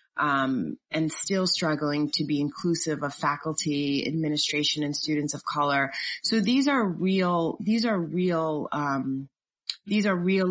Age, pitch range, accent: 30-49, 155-200 Hz, American